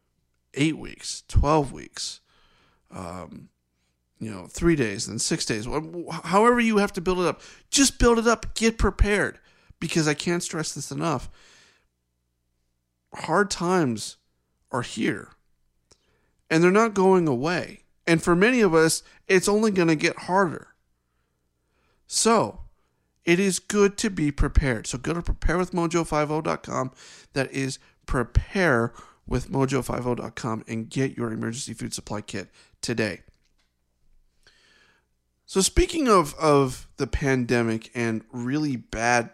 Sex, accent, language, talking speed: male, American, English, 130 wpm